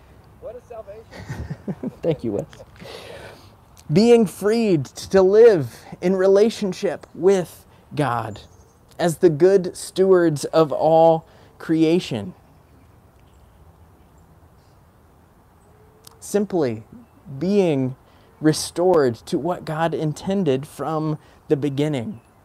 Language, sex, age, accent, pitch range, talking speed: English, male, 20-39, American, 115-180 Hz, 75 wpm